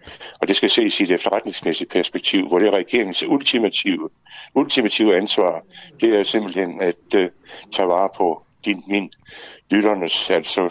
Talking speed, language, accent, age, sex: 145 wpm, Danish, native, 60-79, male